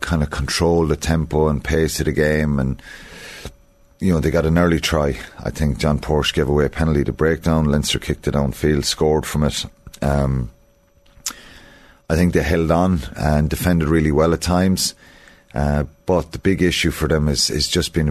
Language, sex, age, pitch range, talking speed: English, male, 30-49, 75-85 Hz, 195 wpm